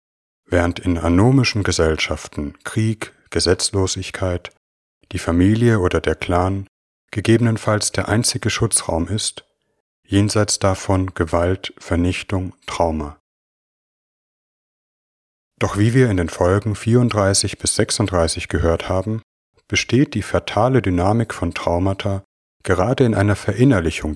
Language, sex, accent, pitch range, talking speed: German, male, German, 85-105 Hz, 105 wpm